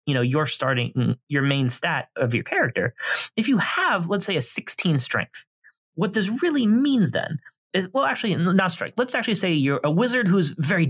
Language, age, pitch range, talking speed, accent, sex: English, 20-39, 130-195 Hz, 200 wpm, American, male